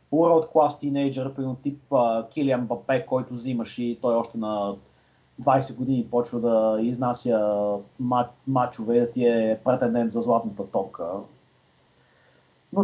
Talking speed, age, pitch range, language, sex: 125 wpm, 30-49, 130-180 Hz, Bulgarian, male